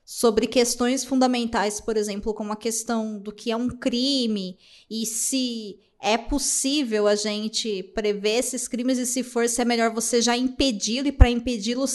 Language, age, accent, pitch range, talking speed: Portuguese, 20-39, Brazilian, 210-260 Hz, 170 wpm